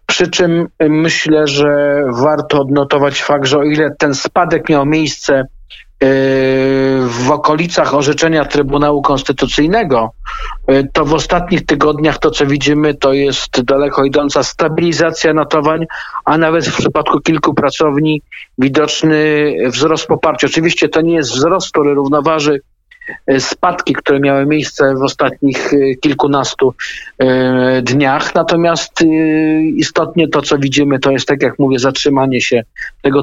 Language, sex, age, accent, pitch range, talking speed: Polish, male, 50-69, native, 140-160 Hz, 125 wpm